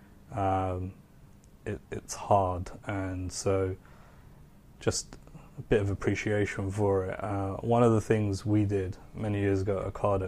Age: 20-39